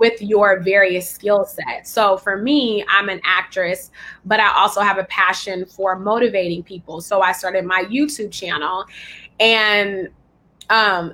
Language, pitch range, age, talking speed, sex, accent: English, 190-220 Hz, 20-39, 150 wpm, female, American